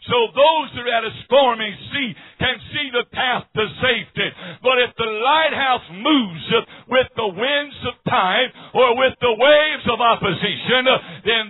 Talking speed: 160 wpm